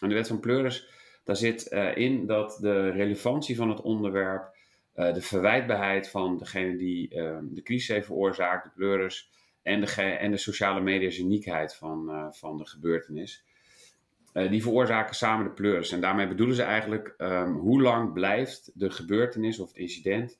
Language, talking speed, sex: Dutch, 175 wpm, male